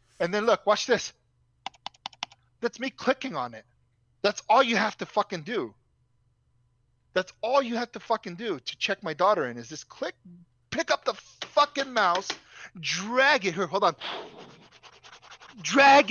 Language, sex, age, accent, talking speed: English, male, 20-39, American, 160 wpm